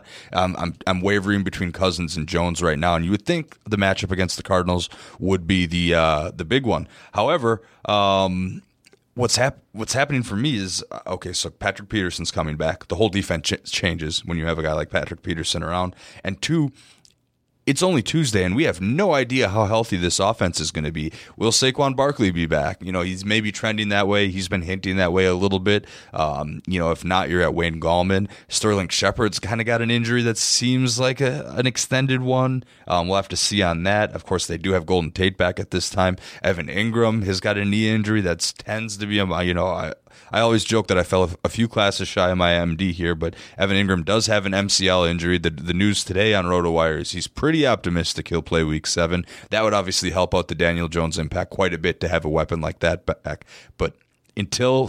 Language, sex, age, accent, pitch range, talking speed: English, male, 20-39, American, 85-110 Hz, 225 wpm